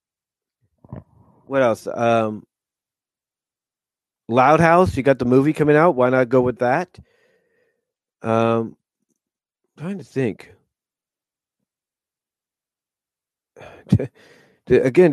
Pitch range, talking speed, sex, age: 125-155 Hz, 85 wpm, male, 40-59